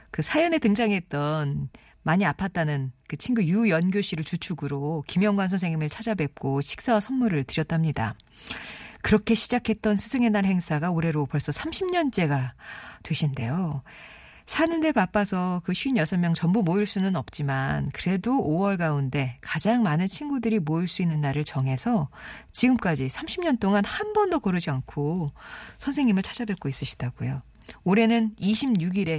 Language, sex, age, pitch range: Korean, female, 40-59, 145-215 Hz